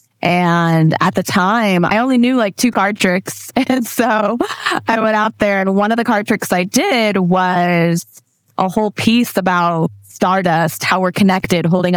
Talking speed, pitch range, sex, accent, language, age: 175 wpm, 165-190 Hz, female, American, English, 20-39